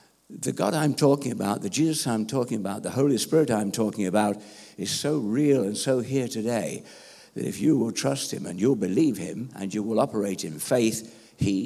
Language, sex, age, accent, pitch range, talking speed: English, male, 60-79, British, 100-125 Hz, 205 wpm